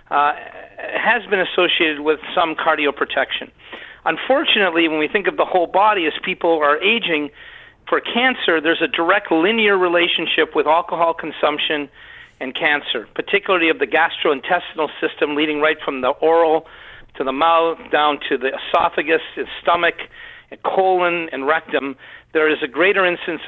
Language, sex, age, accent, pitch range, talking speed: English, male, 50-69, American, 155-200 Hz, 150 wpm